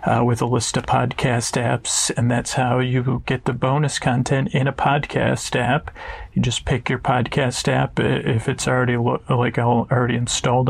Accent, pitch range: American, 120-135 Hz